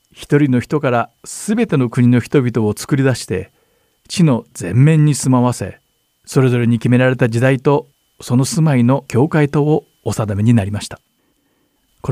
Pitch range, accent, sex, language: 115-145 Hz, native, male, Japanese